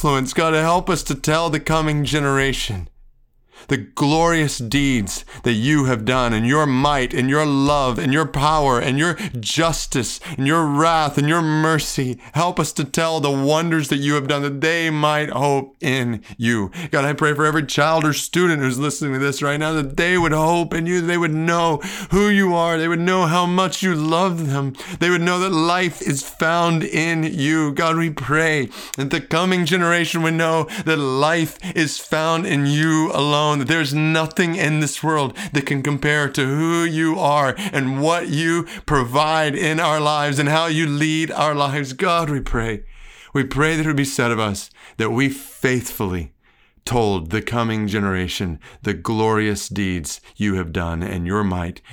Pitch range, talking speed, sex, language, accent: 120-160 Hz, 185 wpm, male, English, American